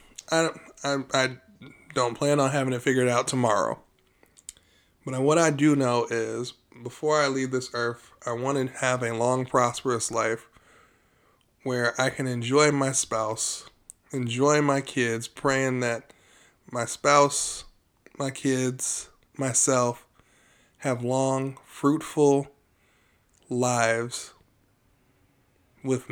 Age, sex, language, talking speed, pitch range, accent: 20-39, male, English, 120 wpm, 120-140 Hz, American